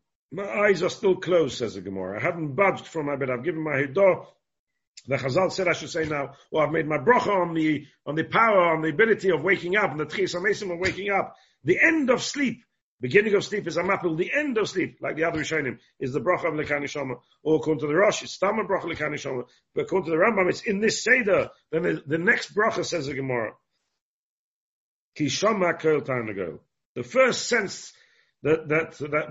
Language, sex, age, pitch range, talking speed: English, male, 50-69, 135-185 Hz, 220 wpm